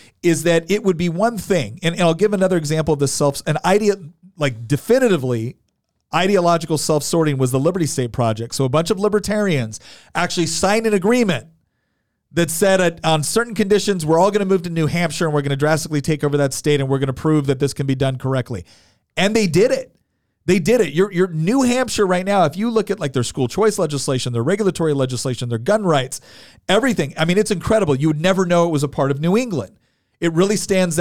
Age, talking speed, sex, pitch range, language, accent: 40-59, 225 wpm, male, 135-185 Hz, English, American